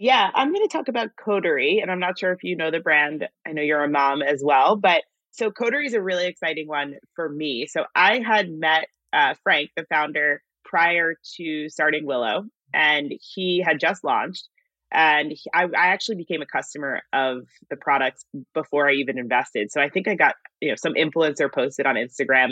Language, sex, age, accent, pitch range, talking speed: English, female, 30-49, American, 140-185 Hz, 205 wpm